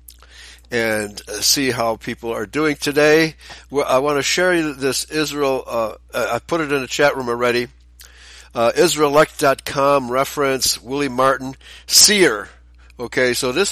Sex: male